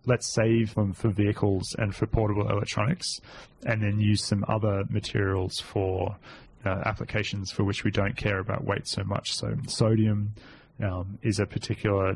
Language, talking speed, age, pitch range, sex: English, 165 wpm, 20-39, 100-120 Hz, male